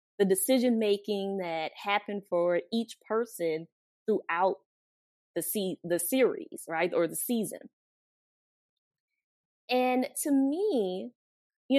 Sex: female